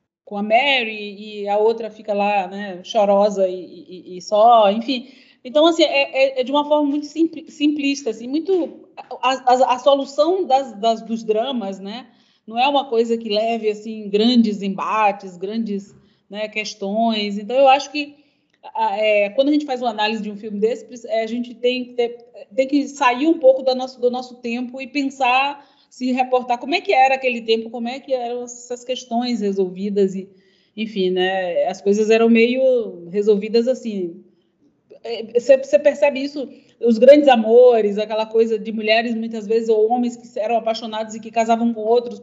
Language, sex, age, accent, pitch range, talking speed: Portuguese, female, 20-39, Brazilian, 215-260 Hz, 180 wpm